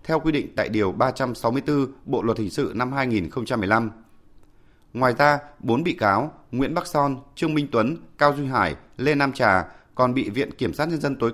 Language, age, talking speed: Vietnamese, 20-39, 195 wpm